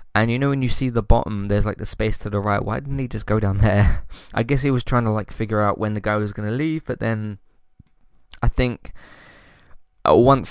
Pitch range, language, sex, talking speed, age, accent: 95-120 Hz, English, male, 245 wpm, 20-39, British